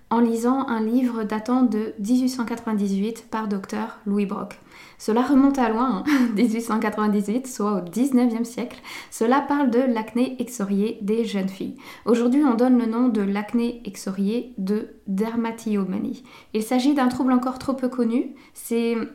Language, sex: French, female